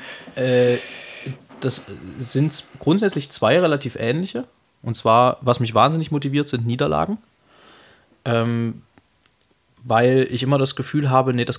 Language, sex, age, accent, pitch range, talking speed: German, male, 20-39, German, 110-130 Hz, 120 wpm